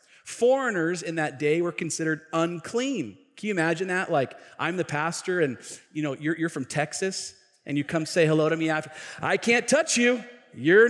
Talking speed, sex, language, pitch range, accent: 195 wpm, male, English, 160-235 Hz, American